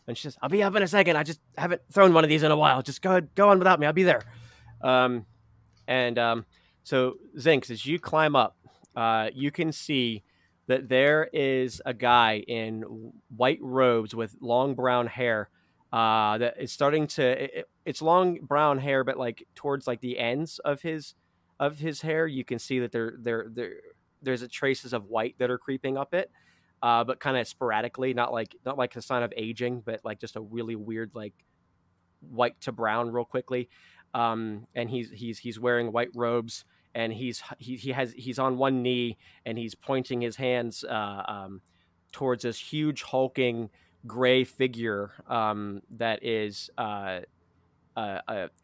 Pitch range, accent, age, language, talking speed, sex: 115-140 Hz, American, 20-39, English, 190 wpm, male